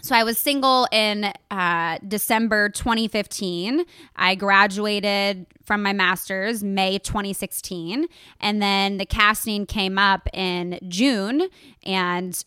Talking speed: 115 wpm